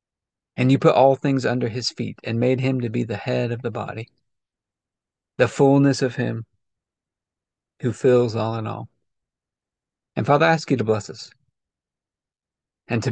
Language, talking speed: English, 170 wpm